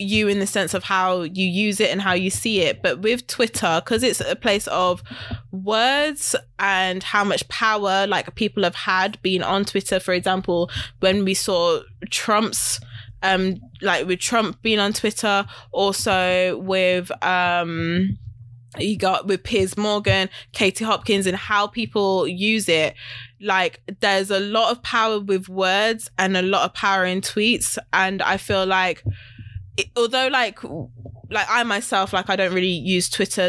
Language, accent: English, British